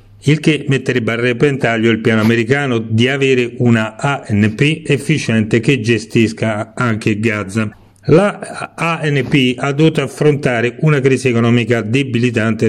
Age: 40-59